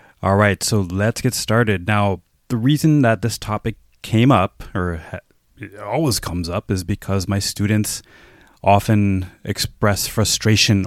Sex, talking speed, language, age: male, 140 wpm, English, 20-39